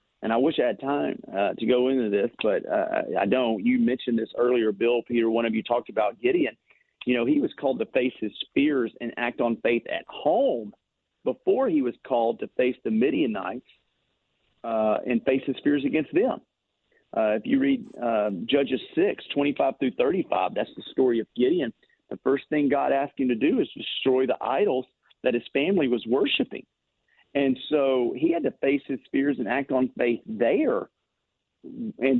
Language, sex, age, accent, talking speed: English, male, 40-59, American, 190 wpm